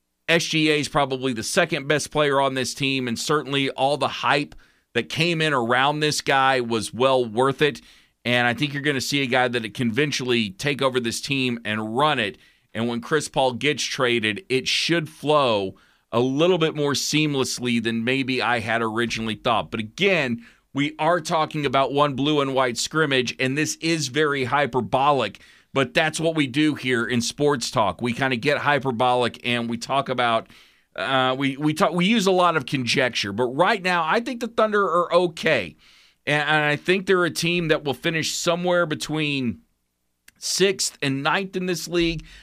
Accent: American